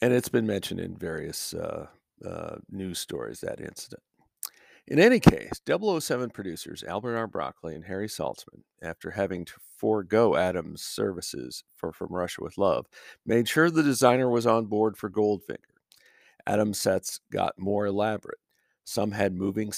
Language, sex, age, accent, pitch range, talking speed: English, male, 50-69, American, 90-110 Hz, 155 wpm